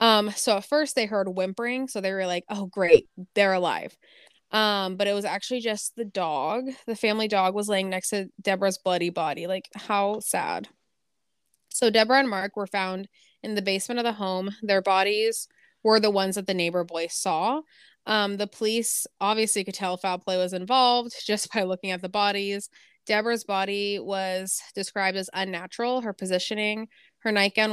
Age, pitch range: 20-39, 185-215 Hz